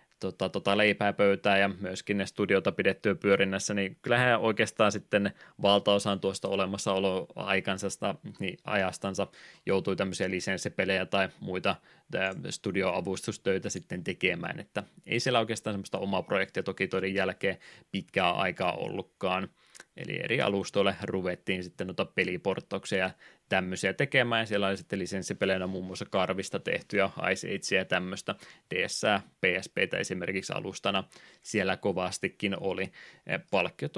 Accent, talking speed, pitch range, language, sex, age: native, 110 wpm, 95-105 Hz, Finnish, male, 20-39